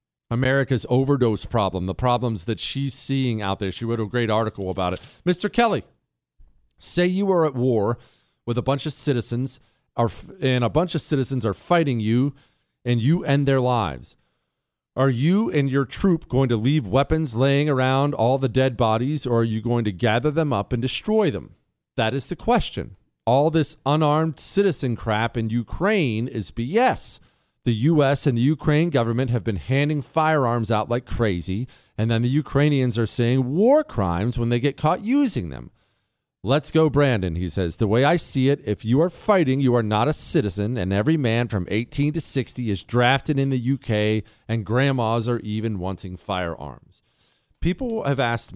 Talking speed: 185 wpm